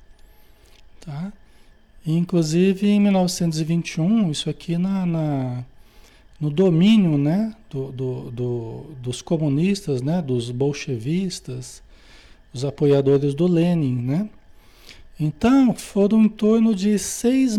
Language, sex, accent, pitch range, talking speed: Portuguese, male, Brazilian, 130-185 Hz, 100 wpm